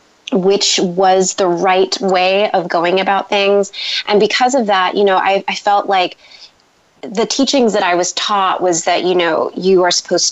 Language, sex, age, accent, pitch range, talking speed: English, female, 20-39, American, 180-225 Hz, 185 wpm